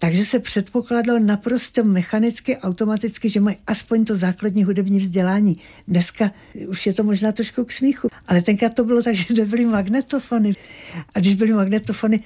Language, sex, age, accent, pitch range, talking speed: Czech, female, 60-79, native, 185-225 Hz, 160 wpm